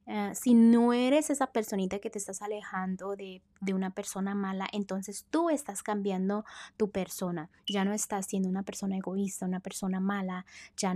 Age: 20-39